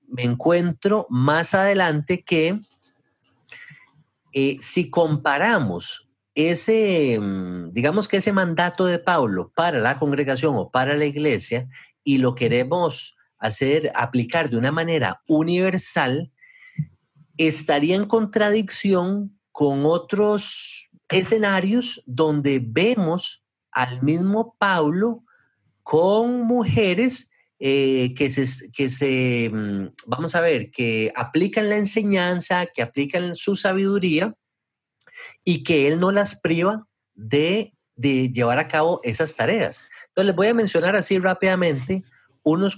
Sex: male